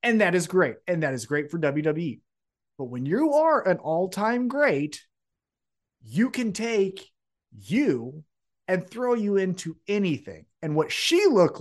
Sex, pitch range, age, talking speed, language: male, 140-200 Hz, 30-49, 155 wpm, English